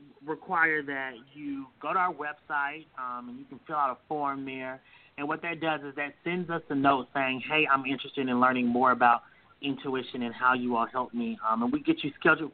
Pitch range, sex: 135-155 Hz, male